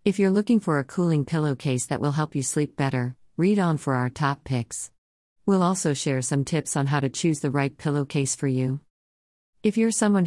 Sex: female